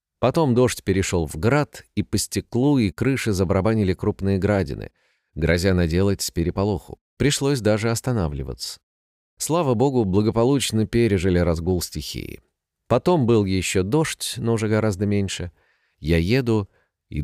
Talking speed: 130 wpm